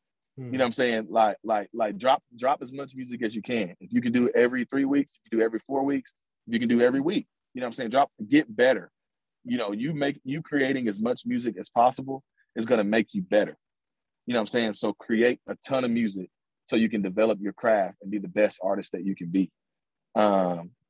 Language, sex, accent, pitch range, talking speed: English, male, American, 110-140 Hz, 255 wpm